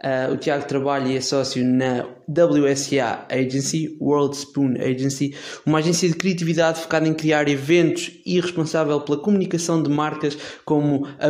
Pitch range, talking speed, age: 140-170 Hz, 155 wpm, 20-39